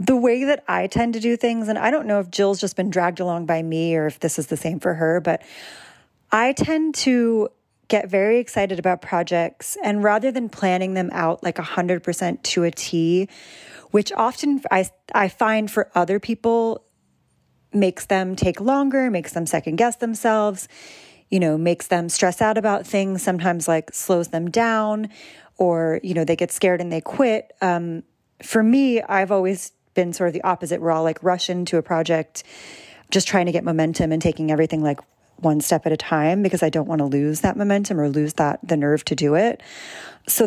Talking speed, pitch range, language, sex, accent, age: 200 wpm, 165-205 Hz, English, female, American, 30-49